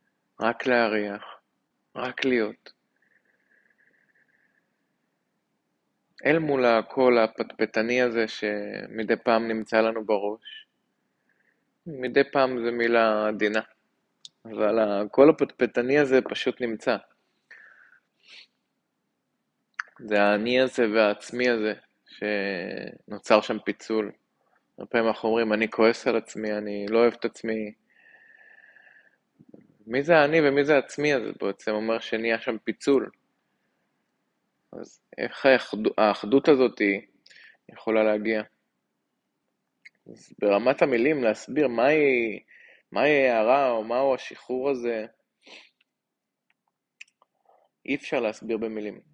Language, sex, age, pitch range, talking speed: Hebrew, male, 20-39, 110-125 Hz, 100 wpm